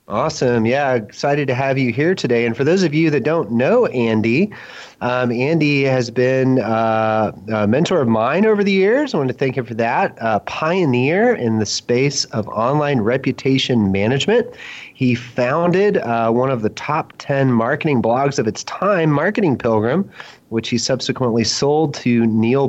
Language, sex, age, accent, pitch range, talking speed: English, male, 30-49, American, 115-145 Hz, 175 wpm